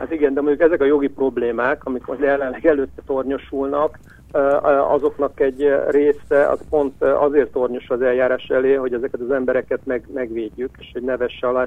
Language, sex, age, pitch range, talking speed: Hungarian, male, 60-79, 125-140 Hz, 170 wpm